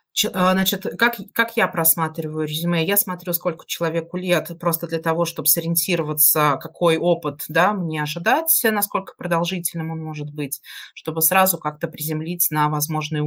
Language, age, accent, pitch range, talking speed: Russian, 30-49, native, 155-200 Hz, 145 wpm